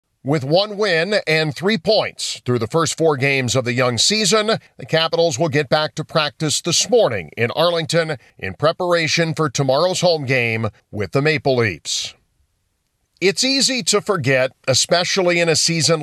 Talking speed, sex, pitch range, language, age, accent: 165 wpm, male, 130-170 Hz, English, 50-69, American